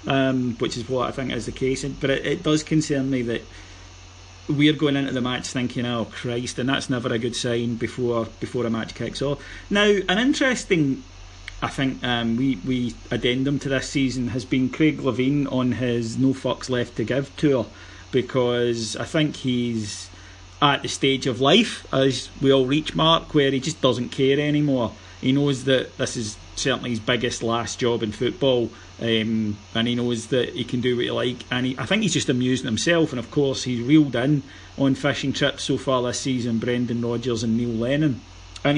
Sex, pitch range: male, 115-140 Hz